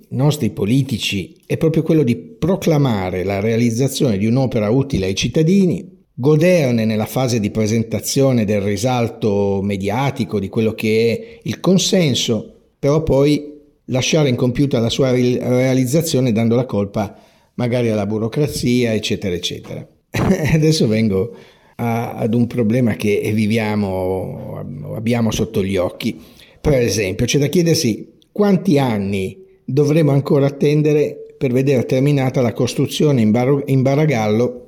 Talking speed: 125 wpm